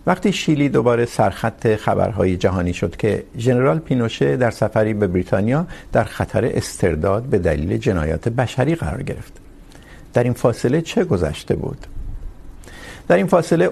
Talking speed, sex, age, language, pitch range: 140 wpm, male, 50-69, Urdu, 100-145 Hz